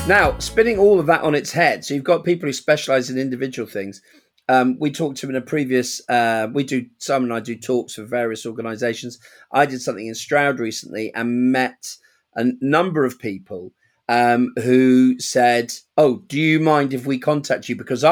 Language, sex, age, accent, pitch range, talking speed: English, male, 30-49, British, 120-145 Hz, 200 wpm